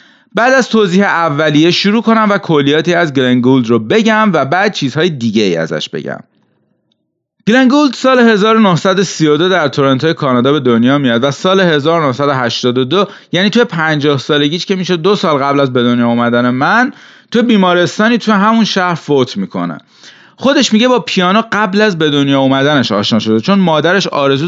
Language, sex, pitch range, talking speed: Persian, male, 145-215 Hz, 160 wpm